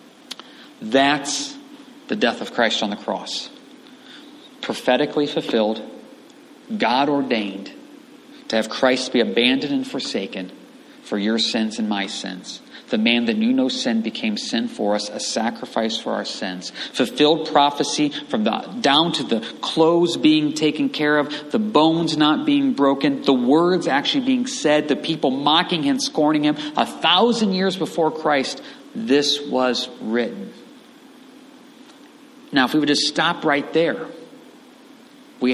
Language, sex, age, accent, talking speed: English, male, 40-59, American, 140 wpm